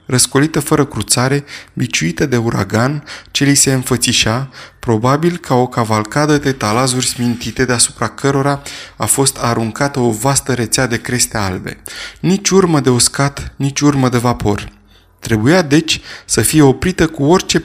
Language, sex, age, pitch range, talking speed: Romanian, male, 20-39, 115-150 Hz, 145 wpm